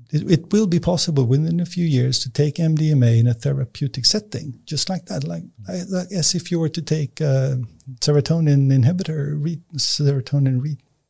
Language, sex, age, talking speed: English, male, 50-69, 185 wpm